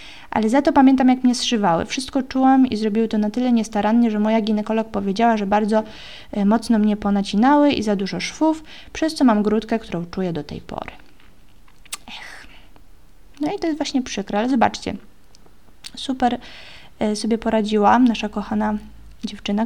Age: 20-39